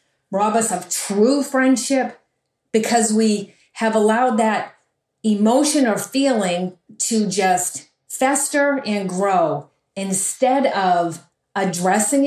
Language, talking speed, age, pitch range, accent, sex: English, 105 wpm, 40-59, 190-245 Hz, American, female